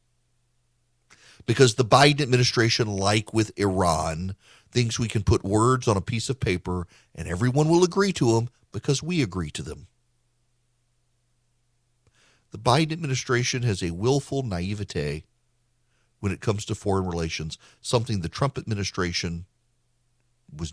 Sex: male